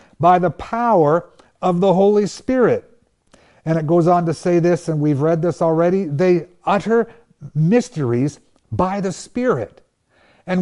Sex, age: male, 60-79